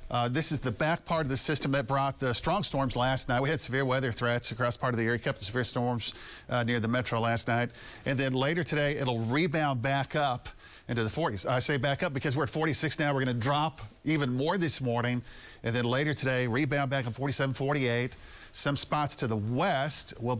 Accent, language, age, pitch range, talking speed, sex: American, English, 40-59, 120-145 Hz, 235 wpm, male